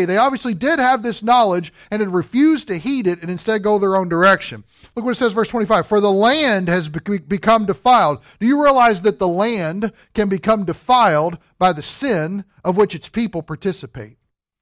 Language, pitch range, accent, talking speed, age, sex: English, 160-245 Hz, American, 195 wpm, 50-69, male